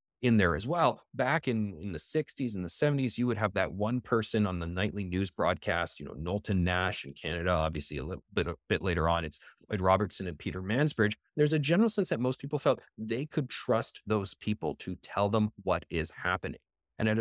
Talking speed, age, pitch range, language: 220 wpm, 30-49, 95-125 Hz, English